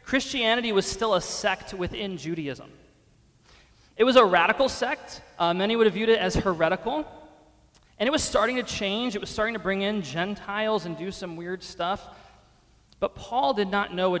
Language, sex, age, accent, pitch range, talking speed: English, male, 30-49, American, 150-200 Hz, 185 wpm